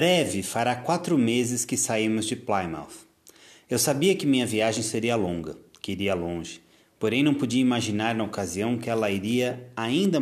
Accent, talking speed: Brazilian, 165 wpm